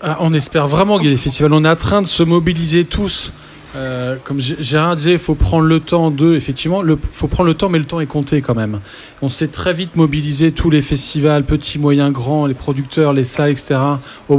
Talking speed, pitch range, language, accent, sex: 210 wpm, 140-170 Hz, French, French, male